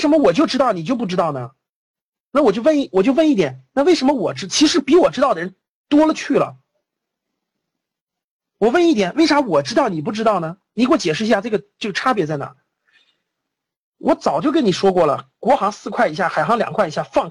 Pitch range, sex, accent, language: 175-285 Hz, male, native, Chinese